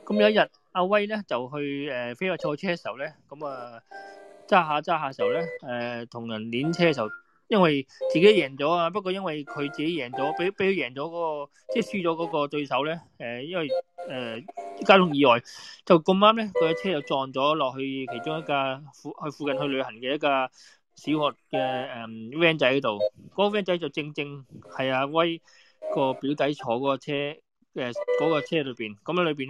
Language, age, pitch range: Japanese, 20-39, 125-170 Hz